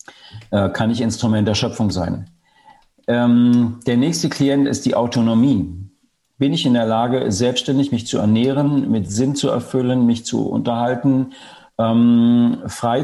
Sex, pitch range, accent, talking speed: male, 110-135 Hz, German, 145 wpm